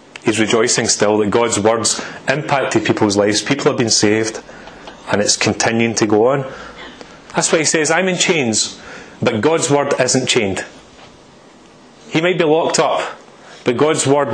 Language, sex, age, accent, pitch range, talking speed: English, male, 30-49, British, 120-155 Hz, 165 wpm